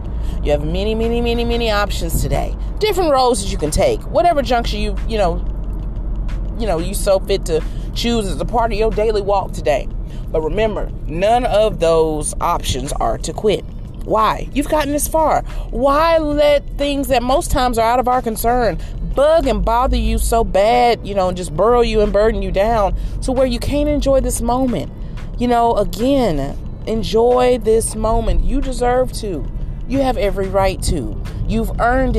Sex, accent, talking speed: female, American, 185 wpm